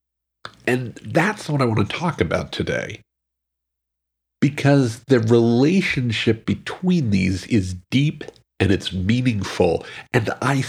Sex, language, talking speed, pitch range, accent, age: male, English, 120 wpm, 90-125 Hz, American, 50-69